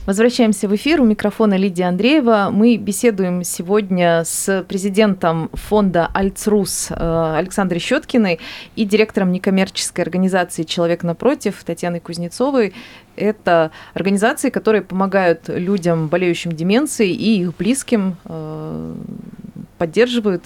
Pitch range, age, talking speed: 170-225 Hz, 30-49, 110 wpm